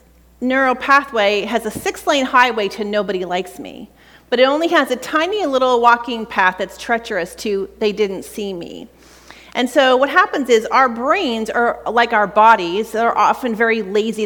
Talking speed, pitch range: 175 wpm, 205-275 Hz